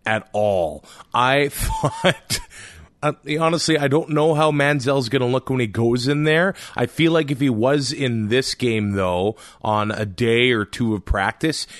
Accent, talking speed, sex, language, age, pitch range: American, 180 wpm, male, English, 30-49, 115-155 Hz